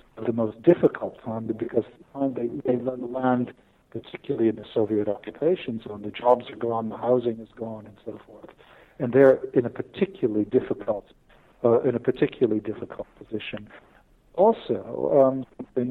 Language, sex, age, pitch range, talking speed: English, male, 50-69, 115-140 Hz, 150 wpm